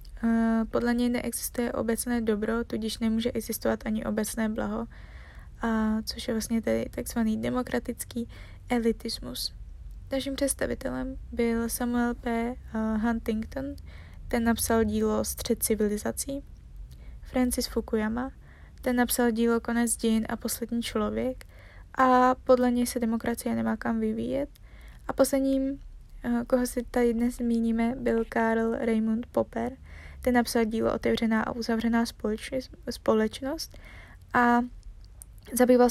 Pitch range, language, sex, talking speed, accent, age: 225-250 Hz, Czech, female, 115 wpm, native, 20-39